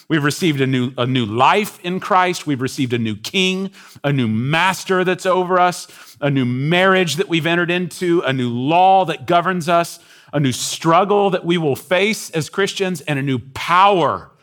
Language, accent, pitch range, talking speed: English, American, 120-175 Hz, 190 wpm